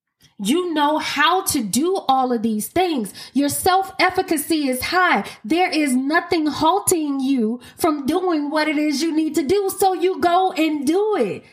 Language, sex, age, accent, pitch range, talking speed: English, female, 20-39, American, 210-330 Hz, 170 wpm